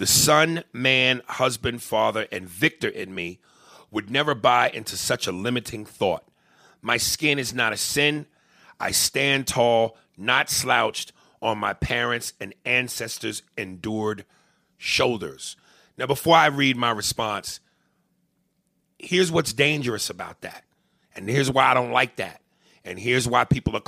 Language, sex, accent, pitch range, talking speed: English, male, American, 110-140 Hz, 145 wpm